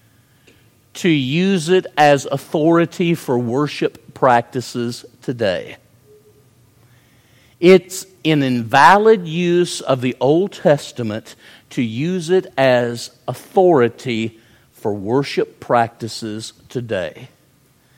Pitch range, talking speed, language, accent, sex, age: 120-160 Hz, 85 wpm, English, American, male, 50-69